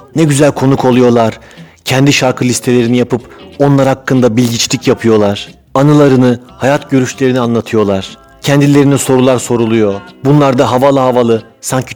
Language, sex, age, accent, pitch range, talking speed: Turkish, male, 40-59, native, 115-150 Hz, 120 wpm